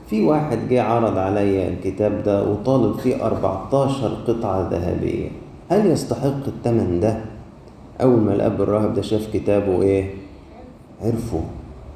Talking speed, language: 125 wpm, Arabic